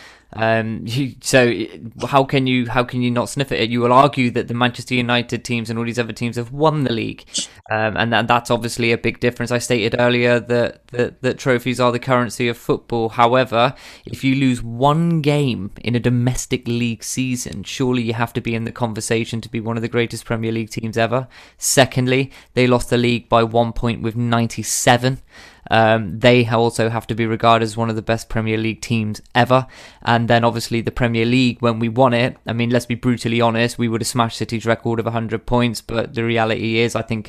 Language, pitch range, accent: English, 115-125 Hz, British